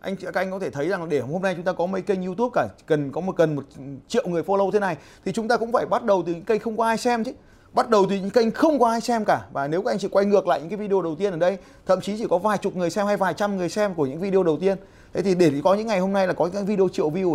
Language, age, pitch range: Vietnamese, 20-39, 145-205 Hz